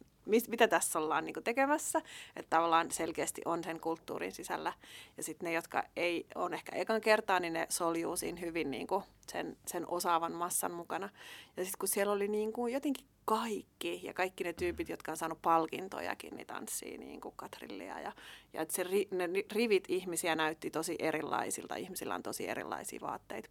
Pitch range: 165-215 Hz